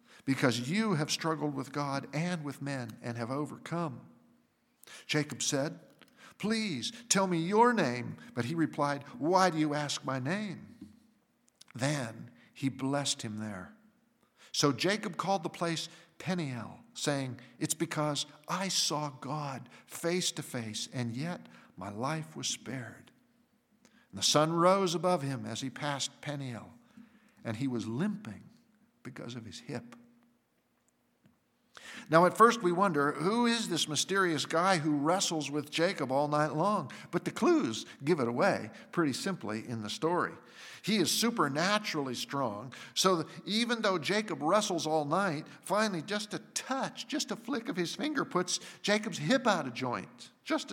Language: English